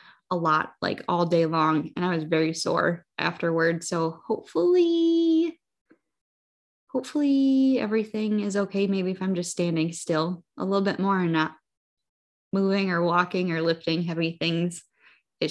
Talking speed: 145 wpm